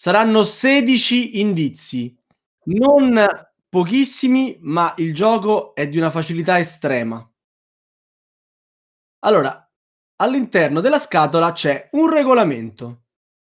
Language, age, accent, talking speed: Italian, 20-39, native, 90 wpm